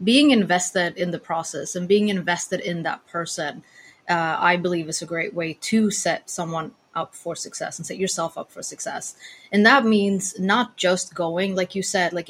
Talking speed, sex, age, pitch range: 195 wpm, female, 20-39, 175-210 Hz